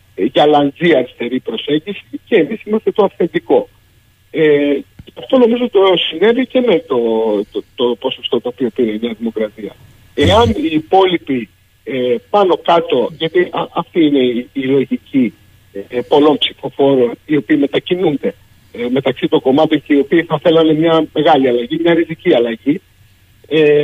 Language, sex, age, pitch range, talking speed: Greek, male, 50-69, 120-195 Hz, 155 wpm